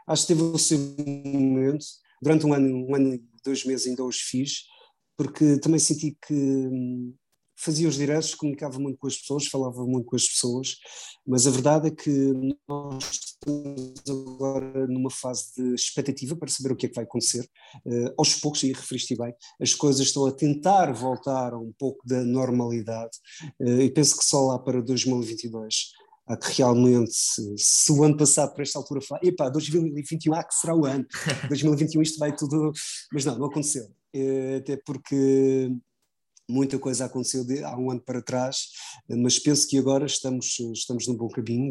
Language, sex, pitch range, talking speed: Portuguese, male, 125-145 Hz, 175 wpm